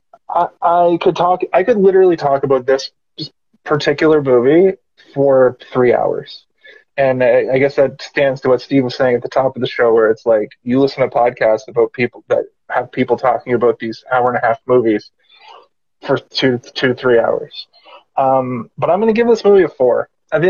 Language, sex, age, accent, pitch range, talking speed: English, male, 20-39, American, 135-165 Hz, 195 wpm